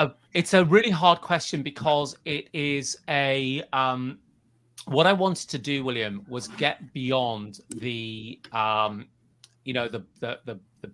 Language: English